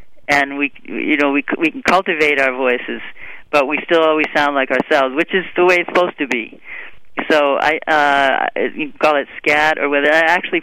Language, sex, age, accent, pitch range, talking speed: English, male, 40-59, American, 145-170 Hz, 210 wpm